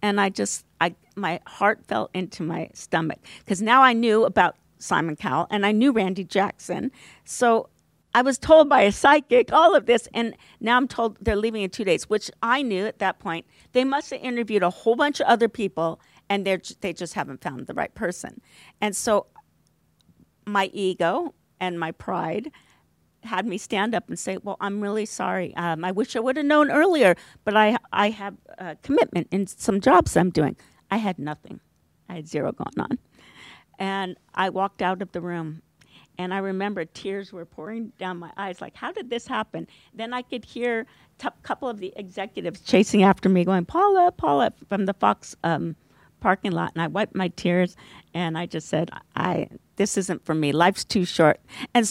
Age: 50-69